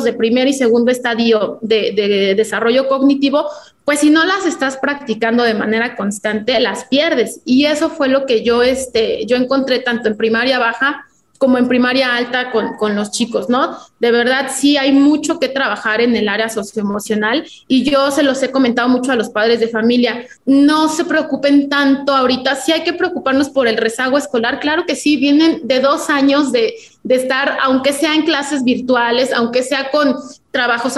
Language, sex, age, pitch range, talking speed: Spanish, female, 30-49, 240-295 Hz, 190 wpm